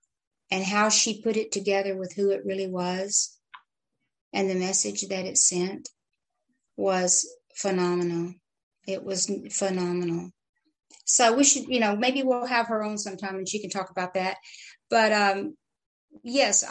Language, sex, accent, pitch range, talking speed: English, female, American, 185-225 Hz, 150 wpm